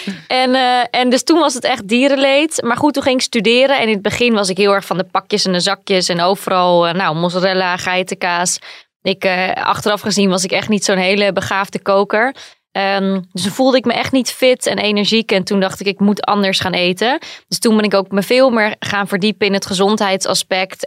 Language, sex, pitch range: Dutch, female, 190-220 Hz